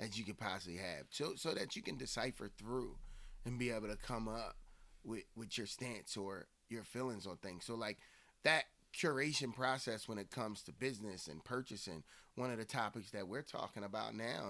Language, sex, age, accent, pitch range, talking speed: English, male, 30-49, American, 100-125 Hz, 200 wpm